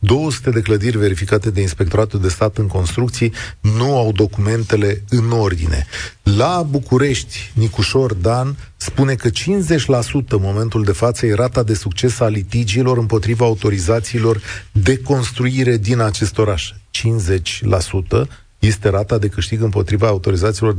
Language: Romanian